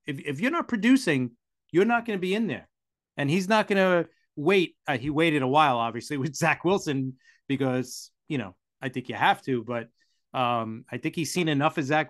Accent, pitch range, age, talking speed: American, 125-180 Hz, 30-49, 220 wpm